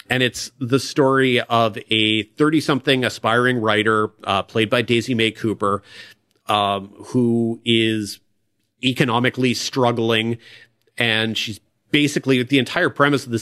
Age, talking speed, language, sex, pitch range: 40-59, 130 wpm, English, male, 110-135 Hz